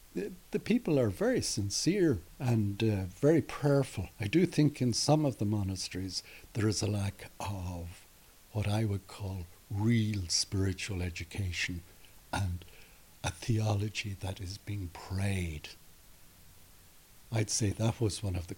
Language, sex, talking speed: English, male, 140 wpm